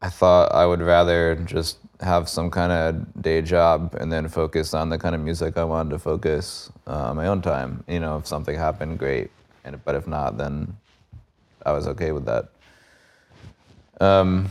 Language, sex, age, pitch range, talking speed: English, male, 20-39, 75-85 Hz, 180 wpm